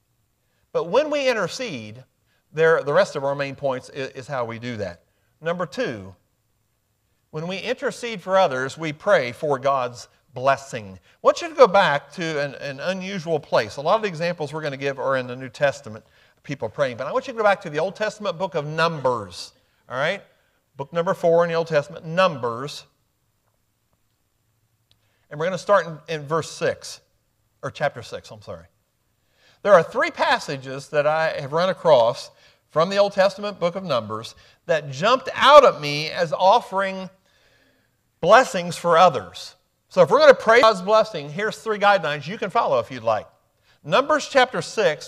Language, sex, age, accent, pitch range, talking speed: English, male, 50-69, American, 130-195 Hz, 185 wpm